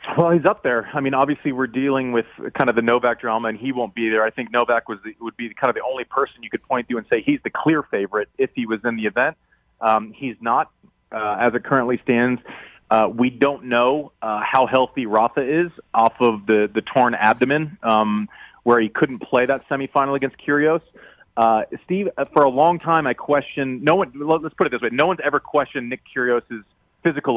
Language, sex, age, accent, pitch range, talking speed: English, male, 30-49, American, 115-145 Hz, 220 wpm